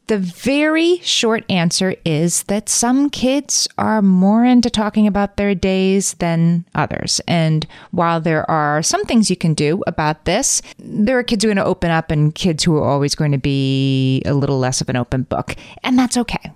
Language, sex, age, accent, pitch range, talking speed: English, female, 30-49, American, 160-215 Hz, 195 wpm